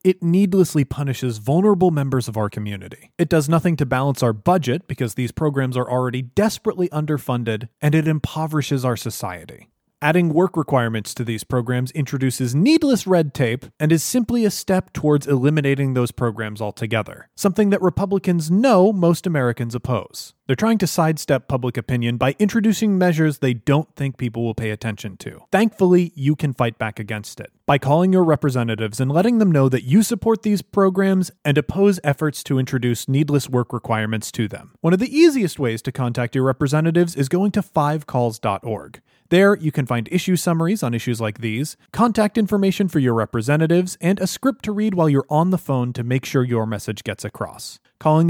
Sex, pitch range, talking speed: male, 120-180 Hz, 185 wpm